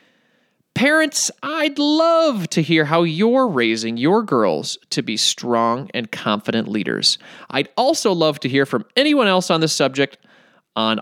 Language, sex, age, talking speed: English, male, 30-49, 150 wpm